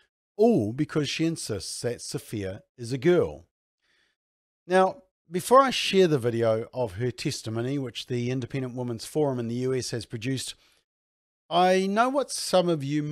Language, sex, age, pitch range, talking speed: English, male, 50-69, 120-155 Hz, 155 wpm